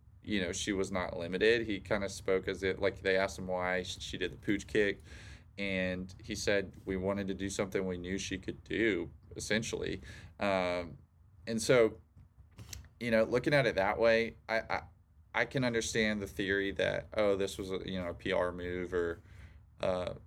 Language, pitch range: English, 90-100 Hz